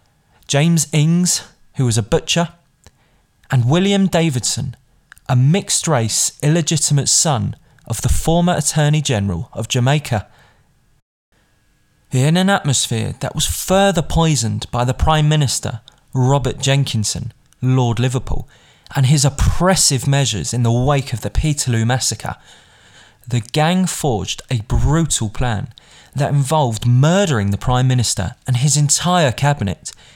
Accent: British